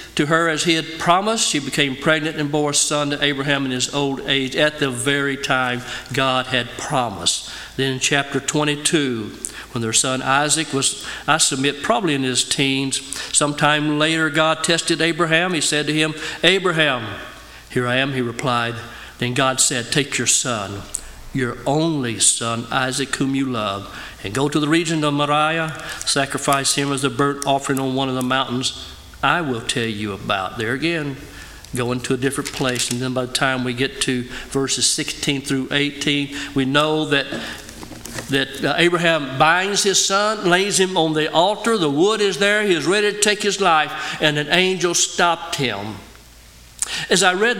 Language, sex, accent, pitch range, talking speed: English, male, American, 130-160 Hz, 180 wpm